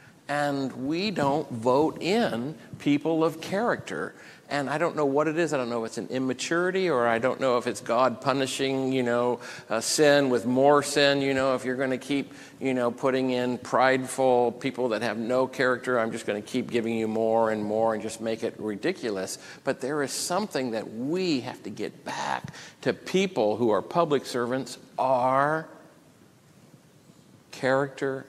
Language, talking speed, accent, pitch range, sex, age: English, 185 wpm, American, 110-135 Hz, male, 50-69